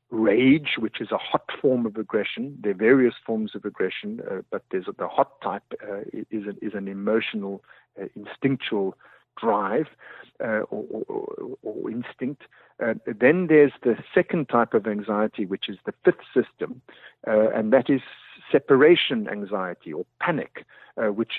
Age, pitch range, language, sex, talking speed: 50-69, 110-145 Hz, English, male, 165 wpm